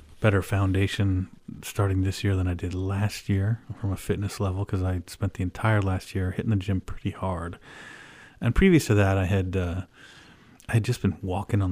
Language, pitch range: English, 95-105 Hz